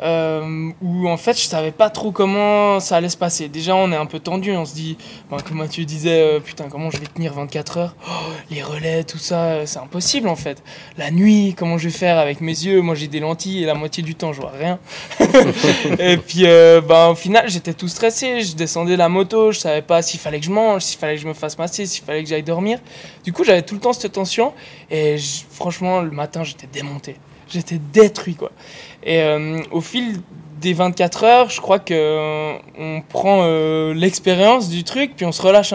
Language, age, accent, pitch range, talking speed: French, 20-39, French, 155-185 Hz, 230 wpm